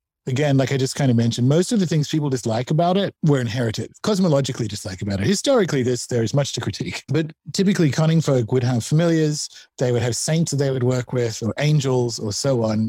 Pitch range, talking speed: 115-150 Hz, 225 wpm